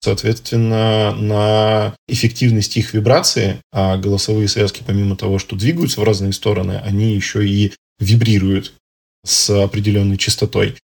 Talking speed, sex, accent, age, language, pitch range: 120 wpm, male, native, 20-39, Russian, 105-120 Hz